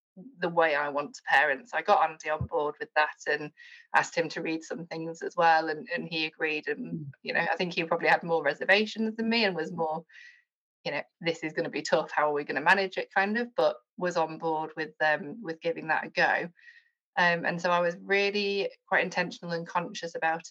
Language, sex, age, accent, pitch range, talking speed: English, female, 20-39, British, 155-195 Hz, 235 wpm